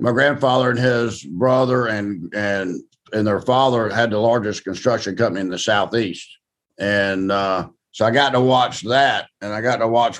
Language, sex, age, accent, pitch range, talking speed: English, male, 50-69, American, 105-130 Hz, 180 wpm